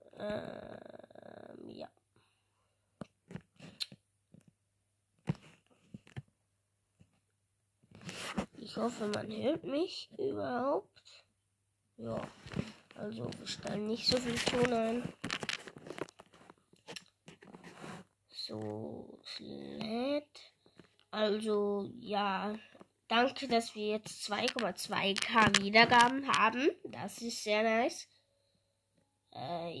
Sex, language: female, German